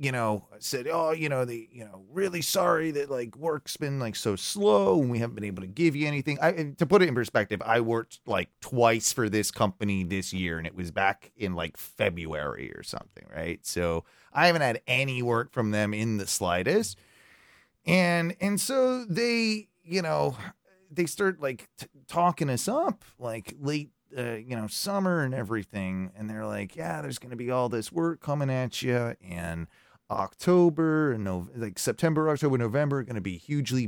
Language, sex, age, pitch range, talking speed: English, male, 30-49, 105-160 Hz, 190 wpm